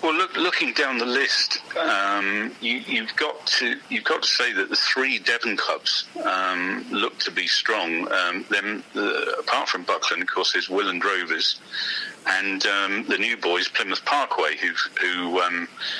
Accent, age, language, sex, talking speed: British, 40-59, English, male, 175 wpm